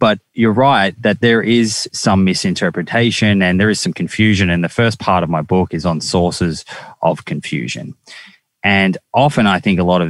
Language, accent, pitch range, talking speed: English, Australian, 85-100 Hz, 190 wpm